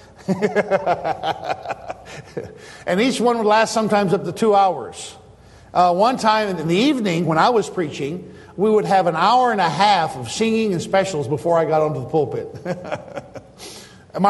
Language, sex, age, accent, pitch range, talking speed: English, male, 50-69, American, 160-205 Hz, 165 wpm